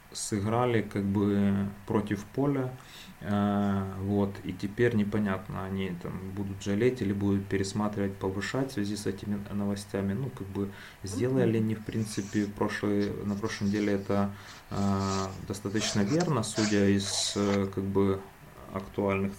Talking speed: 135 wpm